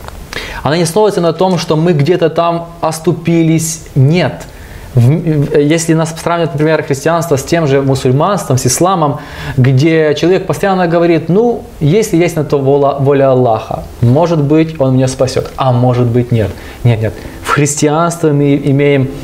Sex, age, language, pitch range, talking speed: male, 20-39, Russian, 125-160 Hz, 155 wpm